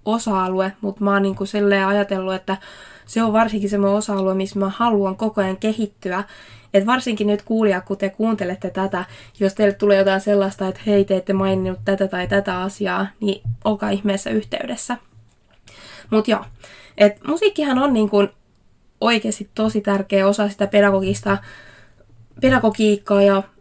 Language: Finnish